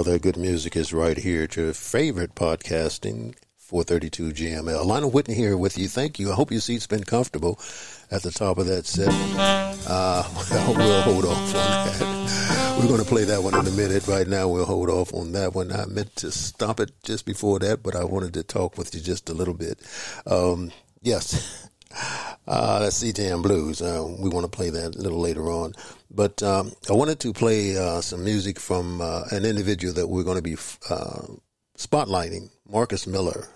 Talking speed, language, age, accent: 205 wpm, English, 50-69, American